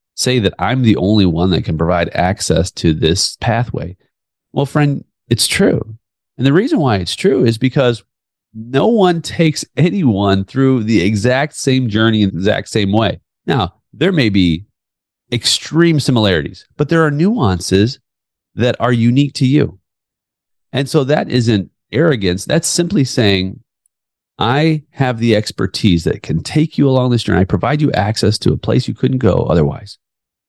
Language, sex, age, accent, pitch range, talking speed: English, male, 40-59, American, 100-140 Hz, 165 wpm